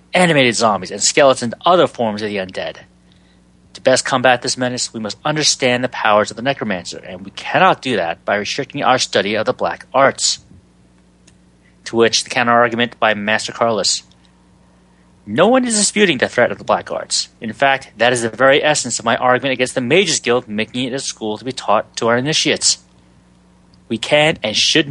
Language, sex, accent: English, male, American